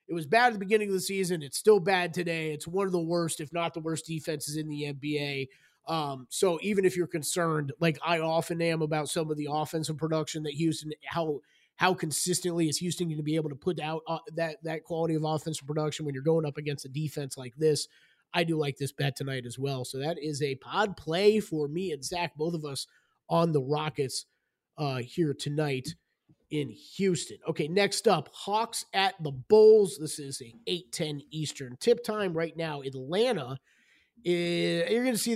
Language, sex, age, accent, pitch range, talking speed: English, male, 30-49, American, 150-190 Hz, 205 wpm